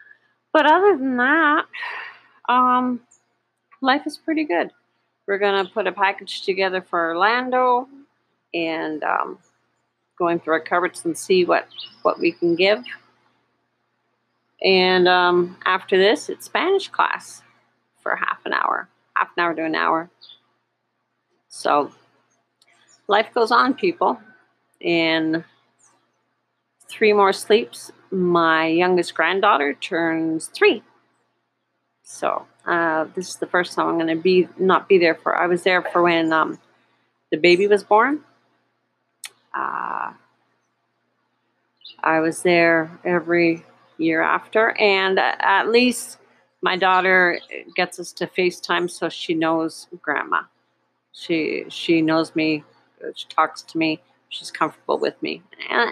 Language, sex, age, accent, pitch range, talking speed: English, female, 40-59, American, 165-240 Hz, 130 wpm